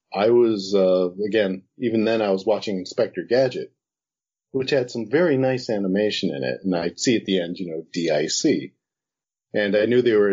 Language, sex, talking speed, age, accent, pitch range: English, male, 190 wpm, 40-59, American, 95-125 Hz